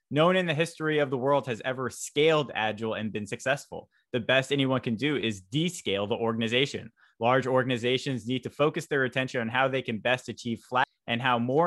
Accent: American